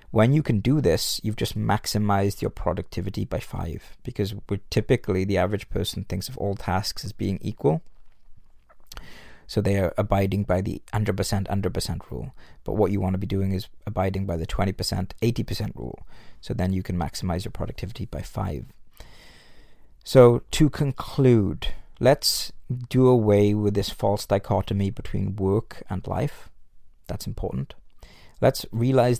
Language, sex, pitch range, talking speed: English, male, 95-115 Hz, 150 wpm